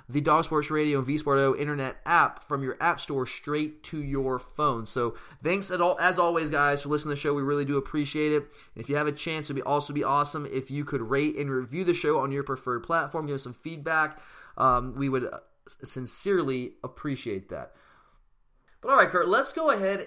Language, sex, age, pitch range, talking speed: English, male, 20-39, 145-180 Hz, 220 wpm